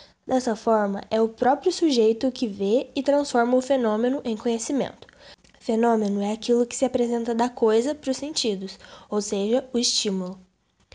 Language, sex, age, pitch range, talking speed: Portuguese, female, 10-29, 225-265 Hz, 160 wpm